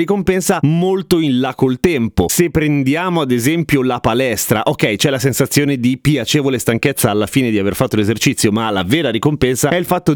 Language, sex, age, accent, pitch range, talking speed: Italian, male, 30-49, native, 120-165 Hz, 190 wpm